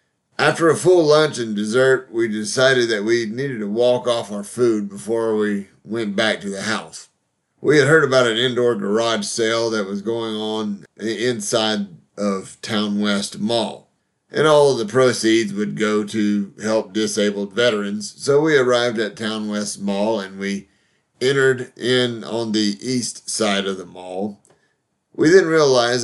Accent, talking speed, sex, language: American, 165 wpm, male, English